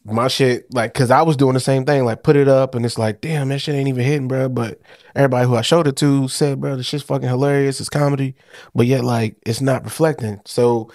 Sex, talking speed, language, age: male, 250 wpm, English, 20-39